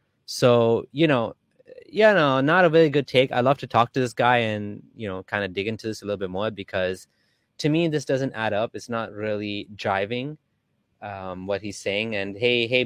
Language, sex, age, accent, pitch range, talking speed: English, male, 20-39, American, 100-135 Hz, 225 wpm